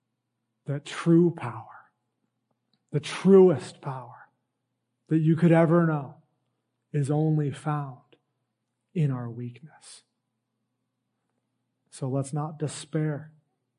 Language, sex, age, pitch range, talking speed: English, male, 40-59, 130-150 Hz, 90 wpm